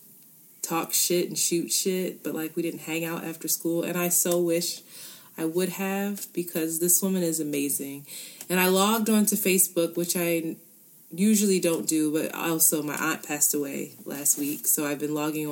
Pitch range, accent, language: 155-180 Hz, American, English